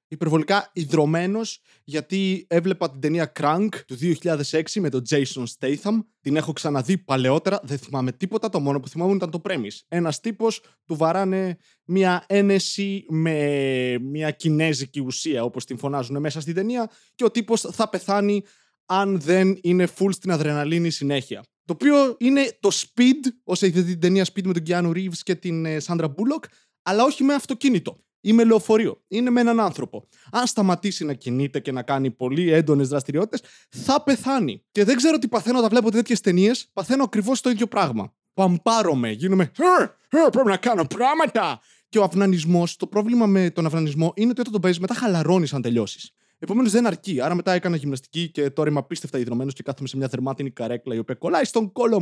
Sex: male